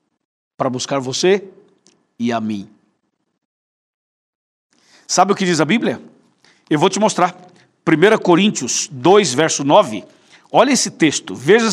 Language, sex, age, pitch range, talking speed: Portuguese, male, 60-79, 150-195 Hz, 130 wpm